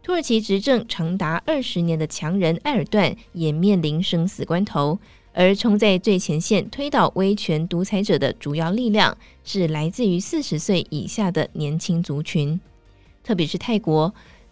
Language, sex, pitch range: Chinese, female, 165-210 Hz